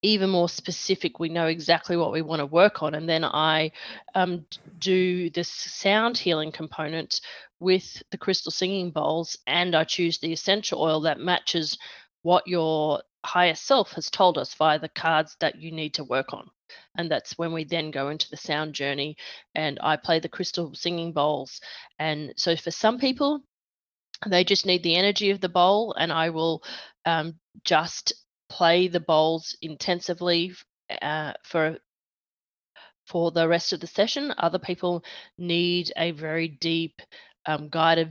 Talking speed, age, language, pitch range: 165 wpm, 30-49, English, 160-180 Hz